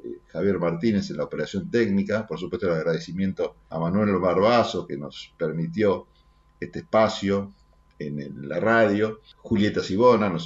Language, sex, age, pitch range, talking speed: Spanish, male, 50-69, 85-115 Hz, 145 wpm